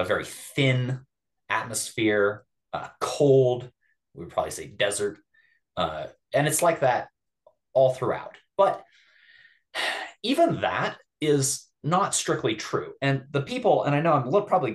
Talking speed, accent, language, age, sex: 130 wpm, American, English, 30-49, male